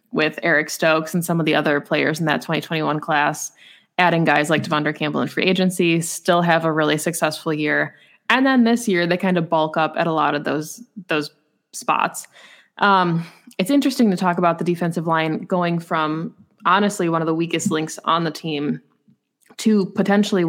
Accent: American